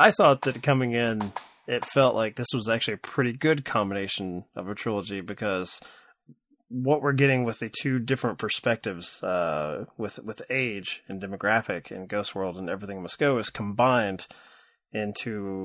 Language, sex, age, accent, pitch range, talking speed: English, male, 20-39, American, 100-130 Hz, 165 wpm